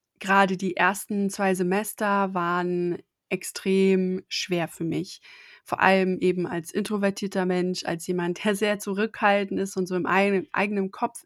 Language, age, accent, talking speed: English, 20-39, German, 150 wpm